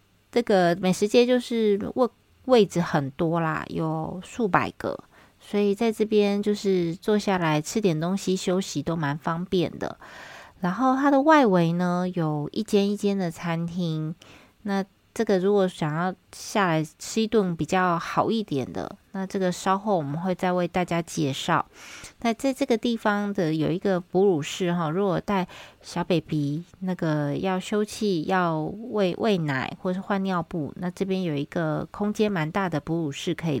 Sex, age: female, 20-39